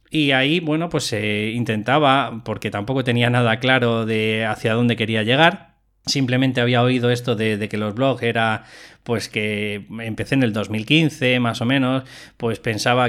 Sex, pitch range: male, 110-130 Hz